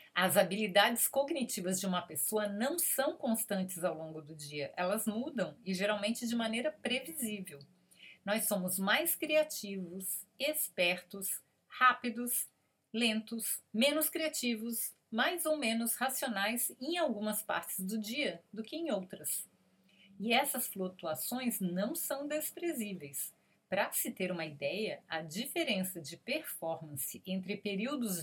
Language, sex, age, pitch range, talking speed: Portuguese, female, 40-59, 185-235 Hz, 125 wpm